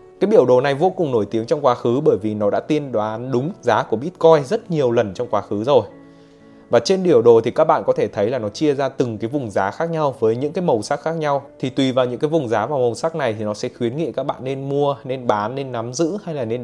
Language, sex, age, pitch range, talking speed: Vietnamese, male, 20-39, 110-140 Hz, 300 wpm